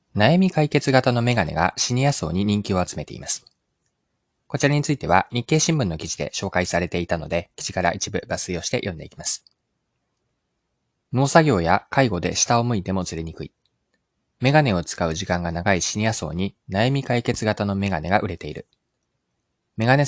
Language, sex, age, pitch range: Japanese, male, 20-39, 90-125 Hz